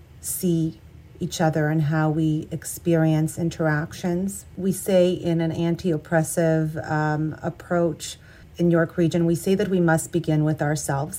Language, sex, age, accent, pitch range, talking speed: English, female, 40-59, American, 155-175 Hz, 135 wpm